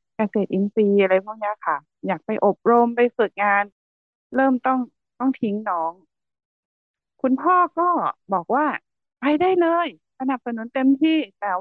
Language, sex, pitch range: Thai, female, 195-260 Hz